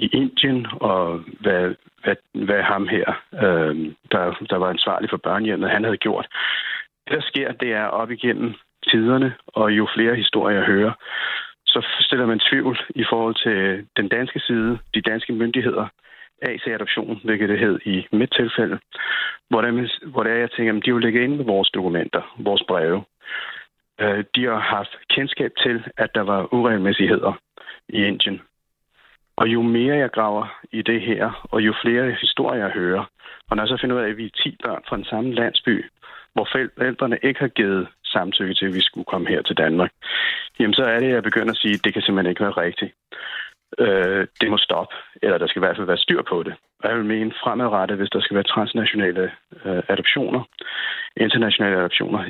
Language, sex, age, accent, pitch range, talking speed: Danish, male, 60-79, native, 100-120 Hz, 190 wpm